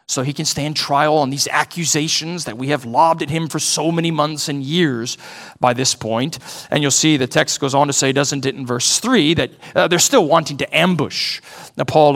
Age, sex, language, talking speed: 40-59, male, English, 220 wpm